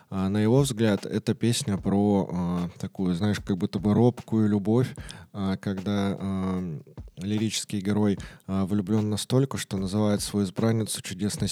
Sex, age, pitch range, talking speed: male, 20-39, 90-110 Hz, 140 wpm